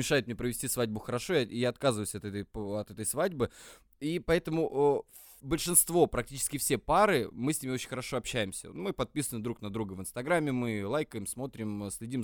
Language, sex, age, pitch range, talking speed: English, male, 20-39, 110-140 Hz, 180 wpm